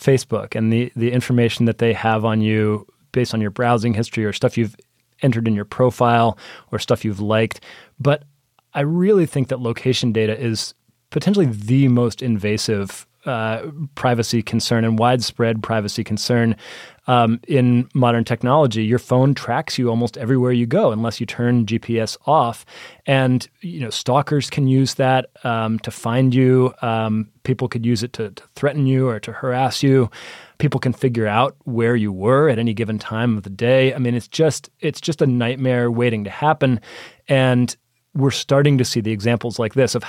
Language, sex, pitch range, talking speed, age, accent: English, male, 110-130 Hz, 180 wpm, 30-49, American